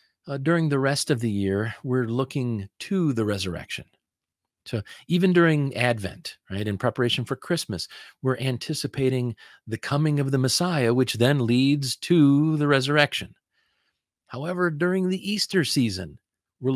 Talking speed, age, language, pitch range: 145 wpm, 40-59, English, 115-160 Hz